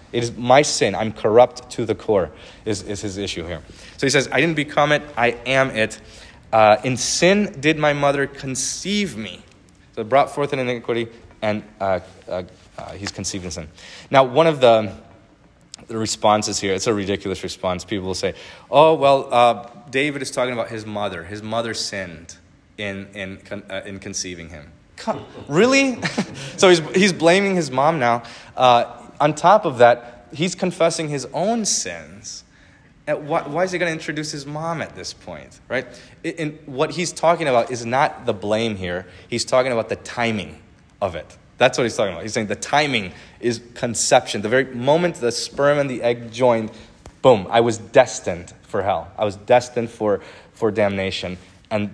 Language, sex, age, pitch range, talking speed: English, male, 30-49, 105-140 Hz, 180 wpm